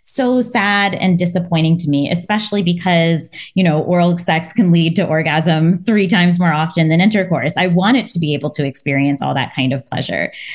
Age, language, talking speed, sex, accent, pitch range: 20-39, English, 195 wpm, female, American, 160-200 Hz